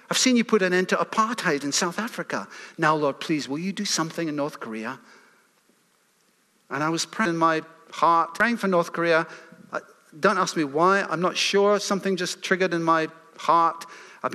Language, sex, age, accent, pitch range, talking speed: English, male, 50-69, British, 165-205 Hz, 190 wpm